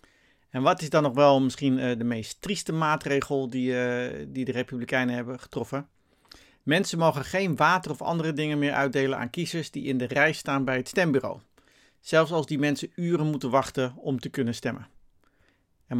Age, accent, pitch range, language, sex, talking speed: 50-69, Dutch, 130-150 Hz, Dutch, male, 175 wpm